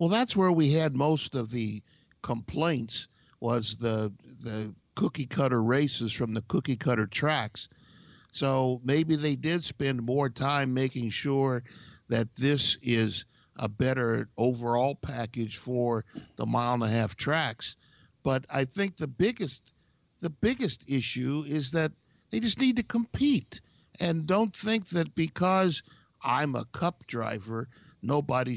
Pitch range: 120-185 Hz